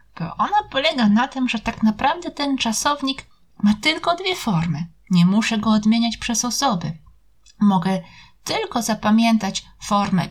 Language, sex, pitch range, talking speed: Italian, female, 180-240 Hz, 140 wpm